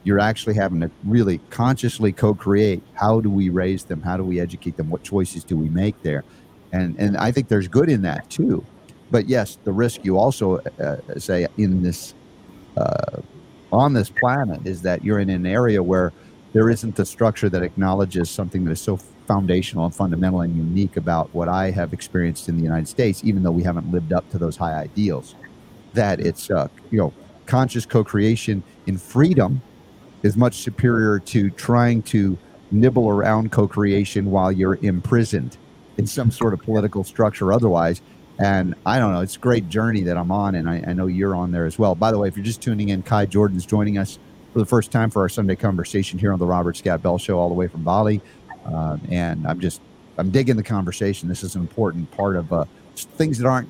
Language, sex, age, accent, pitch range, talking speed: English, male, 50-69, American, 90-110 Hz, 205 wpm